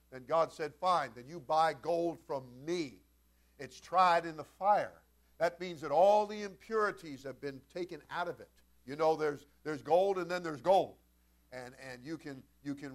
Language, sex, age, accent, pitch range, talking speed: English, male, 50-69, American, 145-205 Hz, 195 wpm